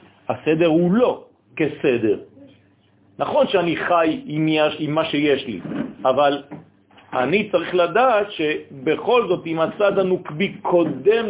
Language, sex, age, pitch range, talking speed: French, male, 40-59, 130-190 Hz, 120 wpm